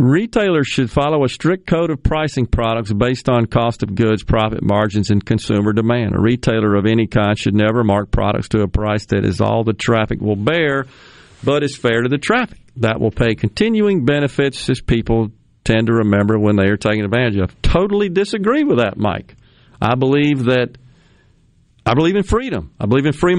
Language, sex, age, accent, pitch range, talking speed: English, male, 50-69, American, 110-145 Hz, 190 wpm